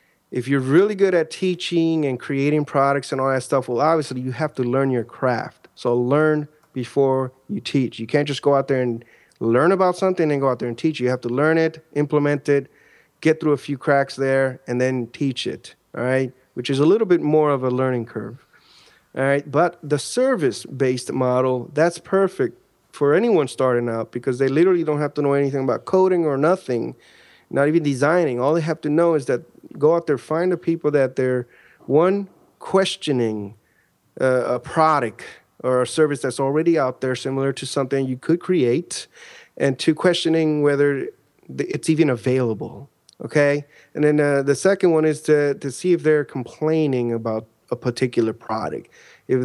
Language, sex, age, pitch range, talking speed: English, male, 30-49, 130-160 Hz, 190 wpm